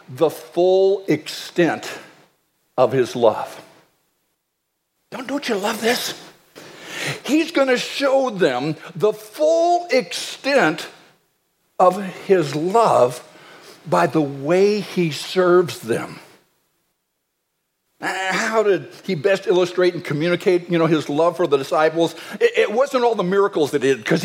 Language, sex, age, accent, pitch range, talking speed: English, male, 60-79, American, 170-215 Hz, 130 wpm